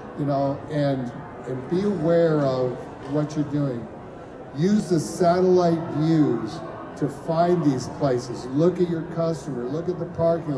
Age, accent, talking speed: 50-69, American, 145 wpm